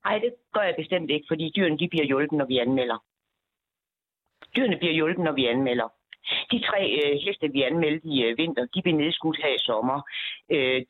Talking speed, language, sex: 200 wpm, Danish, female